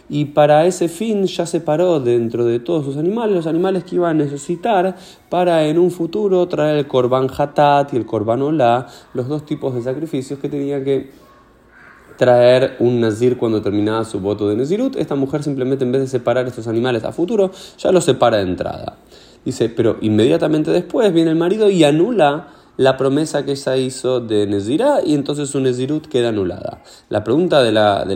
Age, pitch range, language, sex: 20-39, 120-160 Hz, Spanish, male